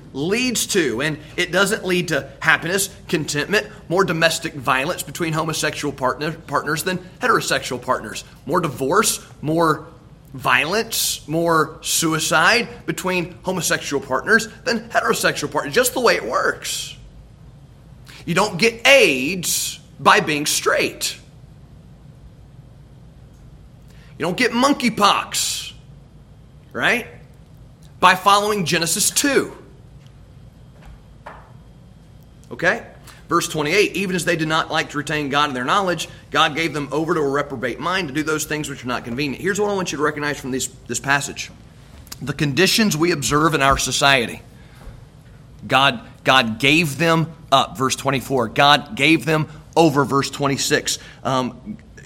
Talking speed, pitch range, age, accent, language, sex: 135 wpm, 140-175 Hz, 30-49, American, English, male